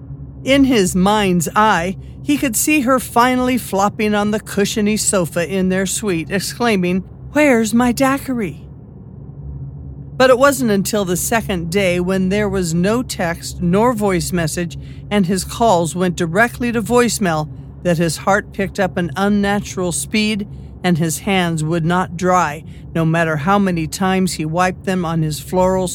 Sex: male